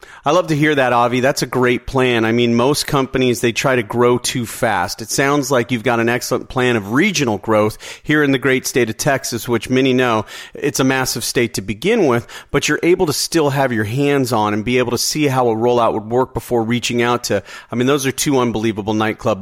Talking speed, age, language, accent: 240 wpm, 40-59, English, American